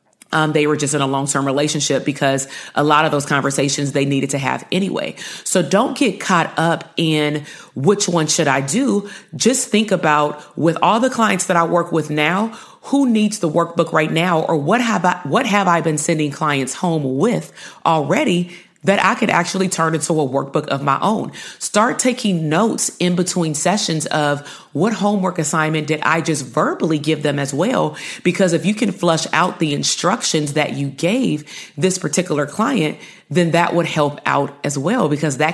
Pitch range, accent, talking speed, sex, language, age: 150-185 Hz, American, 185 wpm, female, English, 30-49